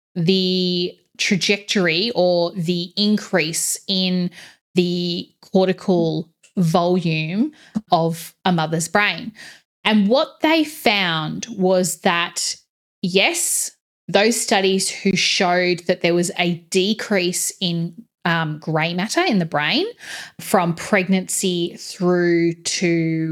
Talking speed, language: 105 wpm, English